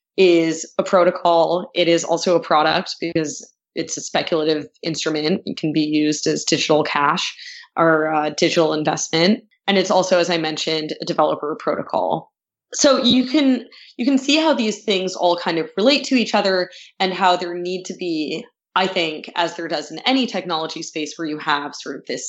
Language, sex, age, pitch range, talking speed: English, female, 20-39, 155-210 Hz, 185 wpm